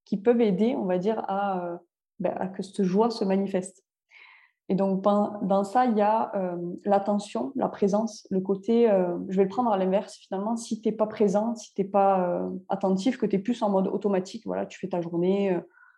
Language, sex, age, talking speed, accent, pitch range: French, female, 20-39, 225 wpm, French, 190-230 Hz